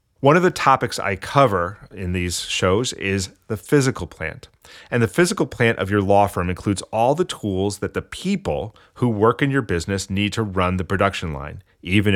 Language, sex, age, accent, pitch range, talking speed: English, male, 30-49, American, 90-115 Hz, 200 wpm